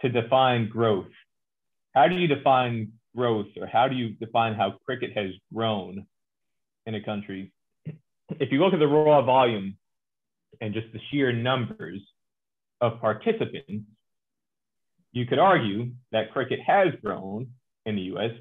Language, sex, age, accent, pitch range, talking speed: English, male, 30-49, American, 110-130 Hz, 145 wpm